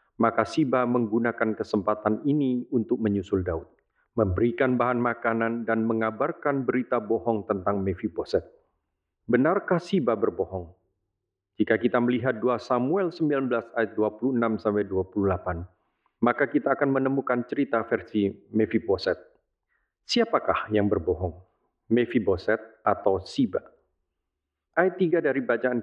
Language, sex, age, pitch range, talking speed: Indonesian, male, 40-59, 105-130 Hz, 105 wpm